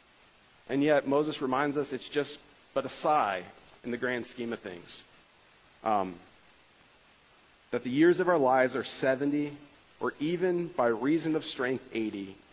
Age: 40-59